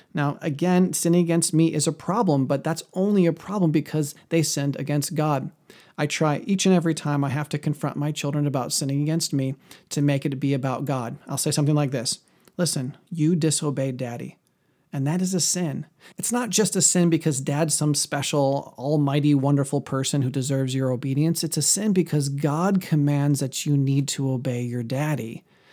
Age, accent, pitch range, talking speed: 40-59, American, 140-165 Hz, 195 wpm